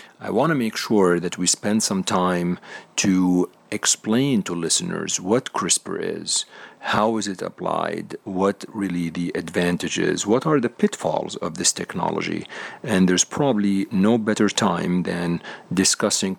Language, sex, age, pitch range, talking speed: English, male, 40-59, 90-105 Hz, 145 wpm